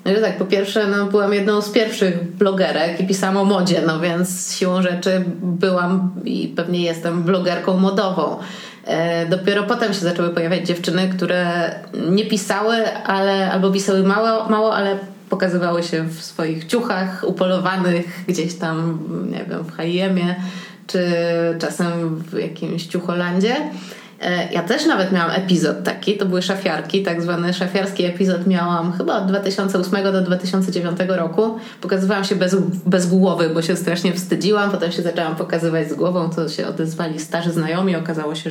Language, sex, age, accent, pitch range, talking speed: Polish, female, 20-39, native, 175-200 Hz, 155 wpm